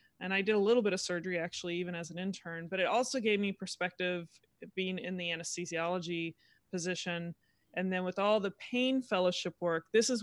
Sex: female